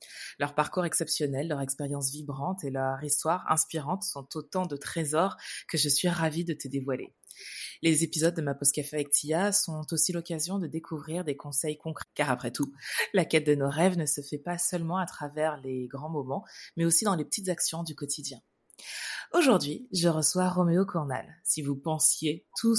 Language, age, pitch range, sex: French, 20-39, 145-180 Hz, female